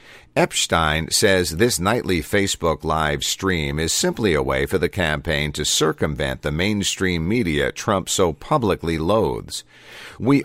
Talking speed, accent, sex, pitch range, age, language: 140 wpm, American, male, 75-100 Hz, 50-69, English